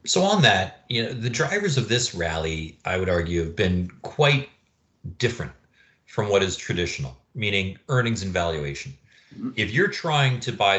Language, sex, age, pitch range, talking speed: English, male, 30-49, 95-130 Hz, 165 wpm